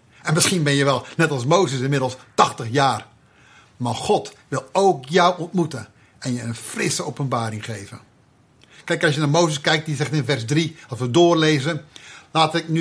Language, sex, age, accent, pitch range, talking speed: Dutch, male, 50-69, Dutch, 135-180 Hz, 185 wpm